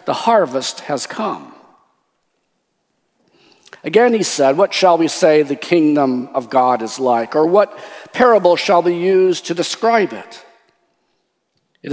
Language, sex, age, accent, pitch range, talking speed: English, male, 50-69, American, 140-185 Hz, 135 wpm